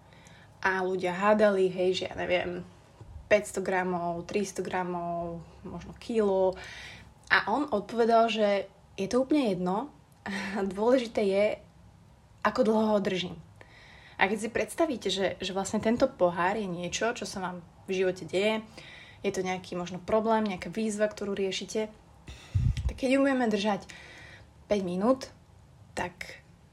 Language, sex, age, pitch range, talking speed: Slovak, female, 20-39, 180-215 Hz, 135 wpm